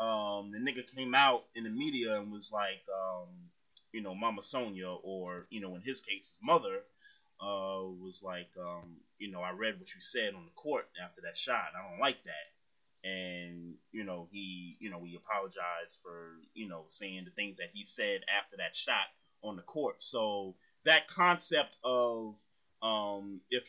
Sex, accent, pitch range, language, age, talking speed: male, American, 100-130 Hz, English, 30-49, 185 wpm